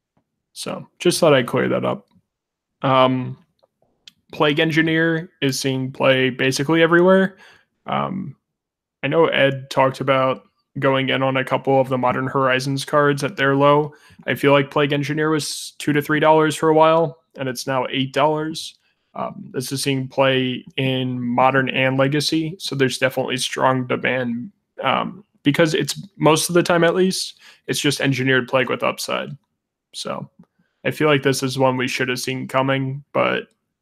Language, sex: English, male